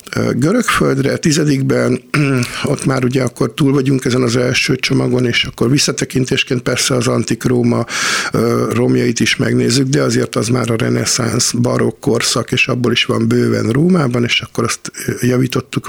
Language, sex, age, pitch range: Hungarian, male, 50-69, 115-130 Hz